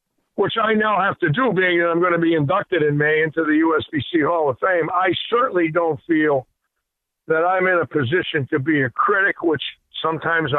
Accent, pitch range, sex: American, 150-200 Hz, male